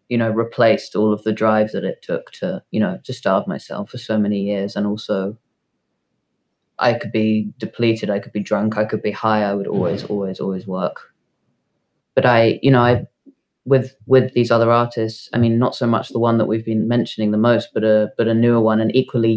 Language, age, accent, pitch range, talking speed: English, 20-39, British, 105-115 Hz, 220 wpm